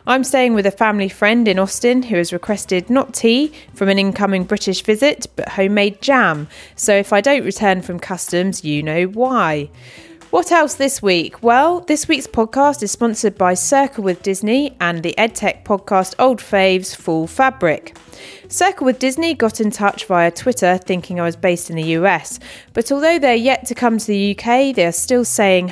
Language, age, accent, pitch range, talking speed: English, 30-49, British, 180-240 Hz, 185 wpm